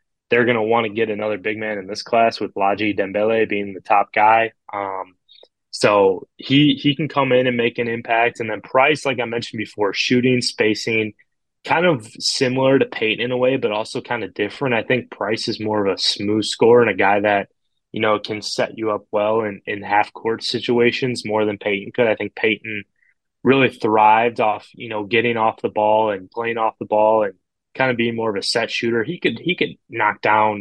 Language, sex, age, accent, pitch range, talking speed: English, male, 20-39, American, 105-120 Hz, 220 wpm